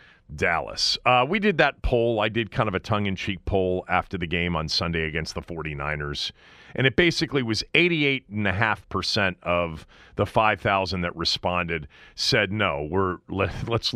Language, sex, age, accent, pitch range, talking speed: English, male, 40-59, American, 85-115 Hz, 155 wpm